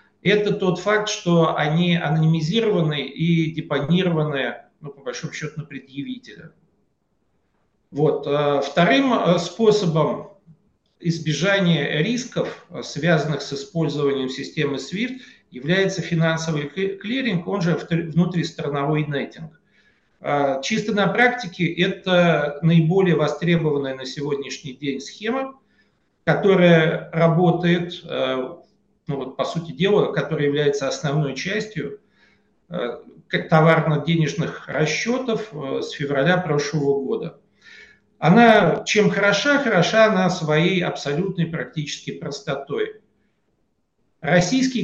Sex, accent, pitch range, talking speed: male, native, 150-200 Hz, 95 wpm